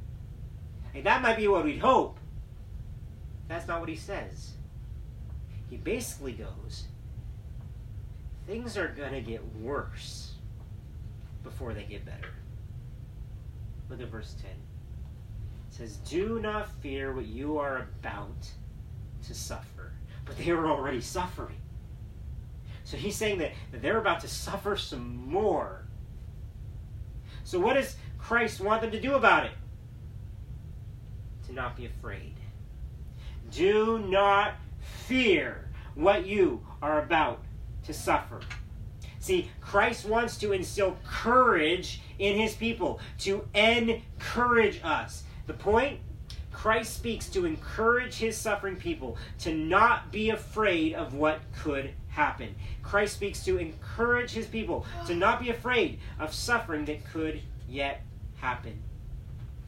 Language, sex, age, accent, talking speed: English, male, 40-59, American, 120 wpm